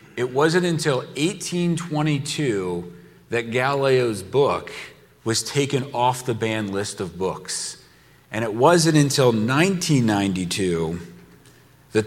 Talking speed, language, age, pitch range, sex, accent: 105 wpm, English, 40-59, 125-180 Hz, male, American